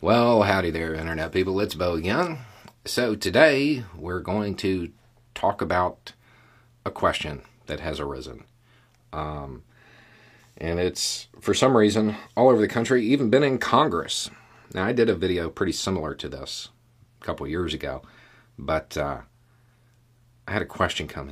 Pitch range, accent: 90-120 Hz, American